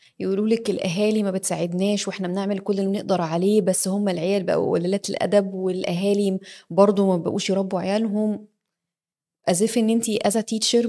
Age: 20-39